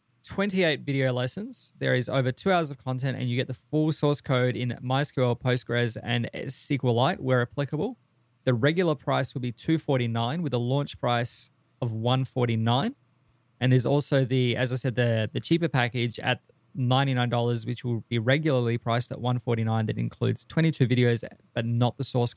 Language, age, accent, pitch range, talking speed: English, 20-39, Australian, 120-140 Hz, 170 wpm